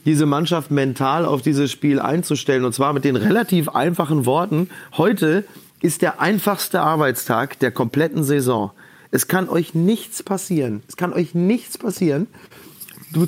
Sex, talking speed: male, 150 wpm